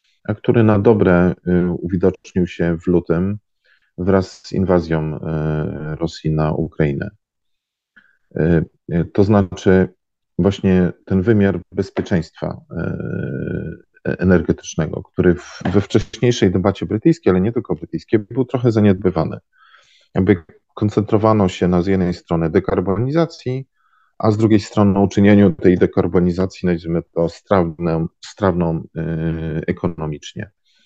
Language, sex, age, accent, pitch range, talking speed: Polish, male, 40-59, native, 80-100 Hz, 105 wpm